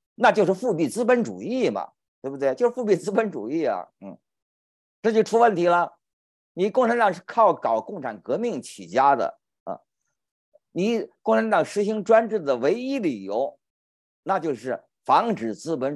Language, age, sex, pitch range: Chinese, 50-69, male, 175-235 Hz